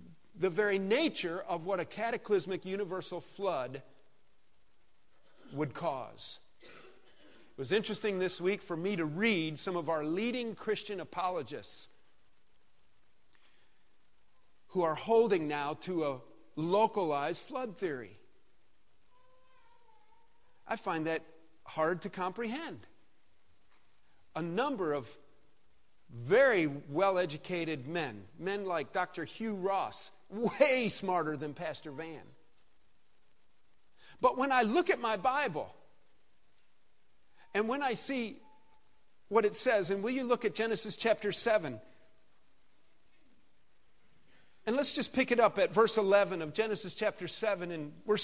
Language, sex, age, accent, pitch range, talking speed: English, male, 50-69, American, 165-225 Hz, 115 wpm